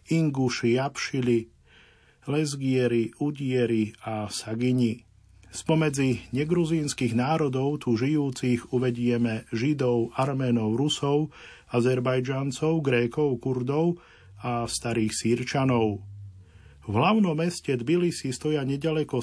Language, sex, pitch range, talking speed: Slovak, male, 115-140 Hz, 85 wpm